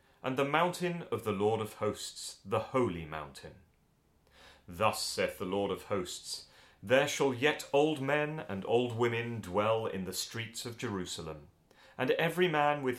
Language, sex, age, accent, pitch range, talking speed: English, male, 30-49, British, 95-130 Hz, 160 wpm